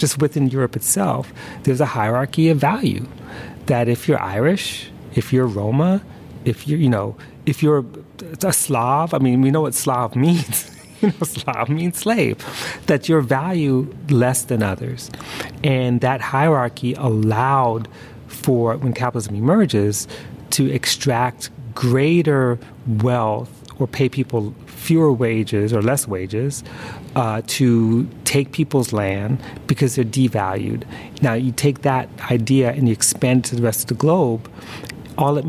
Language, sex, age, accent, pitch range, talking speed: English, male, 40-59, American, 120-145 Hz, 145 wpm